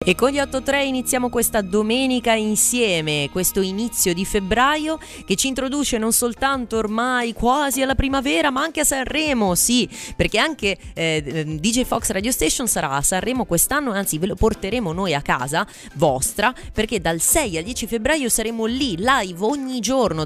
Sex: female